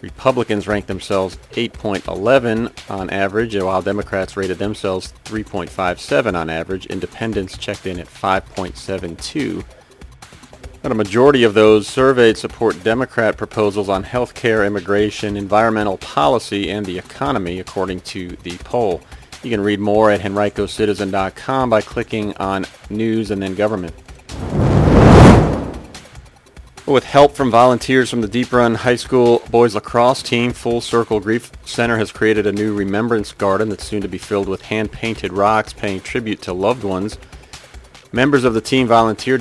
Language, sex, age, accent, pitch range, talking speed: English, male, 40-59, American, 95-115 Hz, 145 wpm